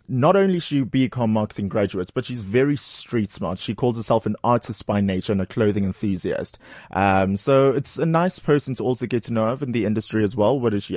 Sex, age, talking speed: male, 20-39, 235 wpm